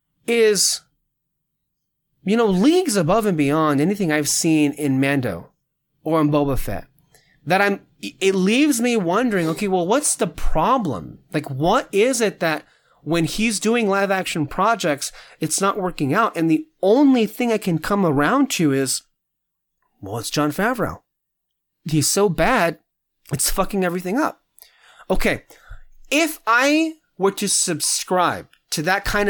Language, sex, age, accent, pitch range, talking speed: English, male, 30-49, American, 150-210 Hz, 145 wpm